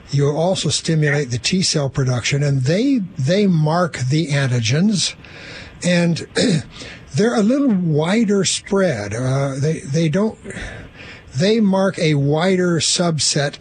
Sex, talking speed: male, 125 wpm